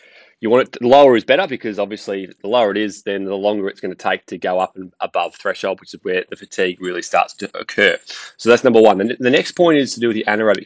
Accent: Australian